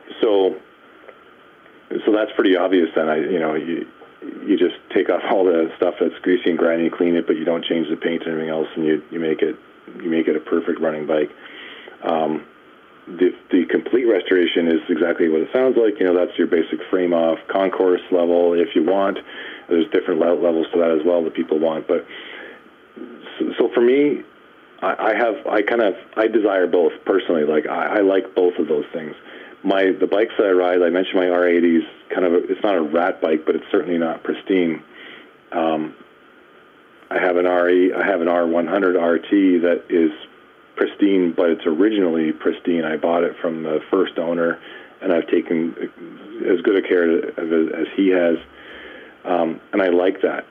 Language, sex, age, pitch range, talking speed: English, male, 40-59, 85-115 Hz, 190 wpm